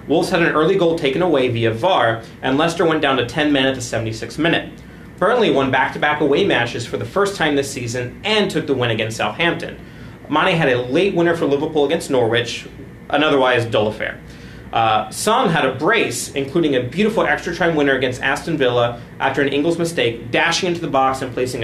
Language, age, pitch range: English, 30-49, 120-155 Hz